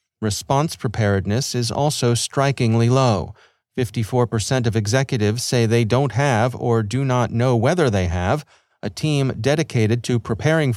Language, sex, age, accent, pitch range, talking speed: English, male, 40-59, American, 115-145 Hz, 145 wpm